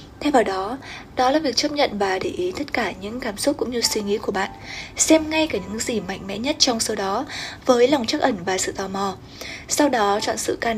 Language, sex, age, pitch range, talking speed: Vietnamese, female, 20-39, 205-260 Hz, 255 wpm